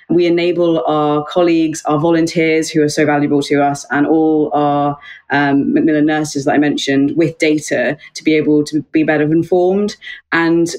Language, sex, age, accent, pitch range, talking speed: English, female, 20-39, British, 150-175 Hz, 170 wpm